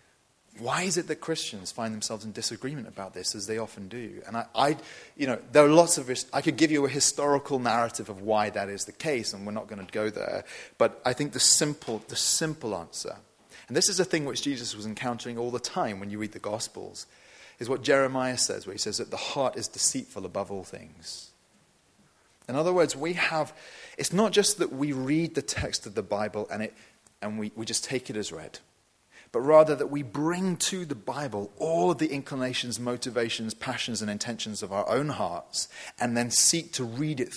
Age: 30-49